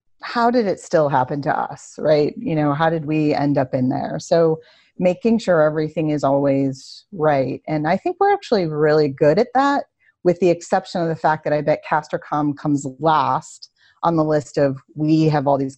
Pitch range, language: 145-190 Hz, English